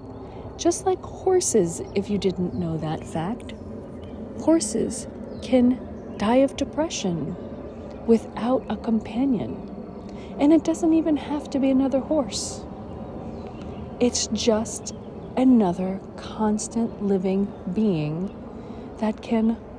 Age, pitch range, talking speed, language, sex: 40-59, 155-230 Hz, 105 wpm, English, female